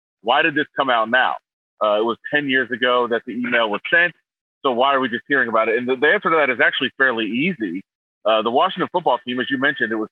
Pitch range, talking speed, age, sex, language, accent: 120-150 Hz, 265 wpm, 30-49, male, English, American